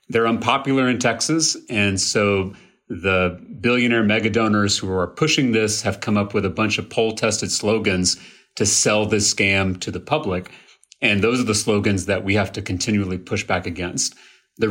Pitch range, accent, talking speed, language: 100-125 Hz, American, 185 wpm, English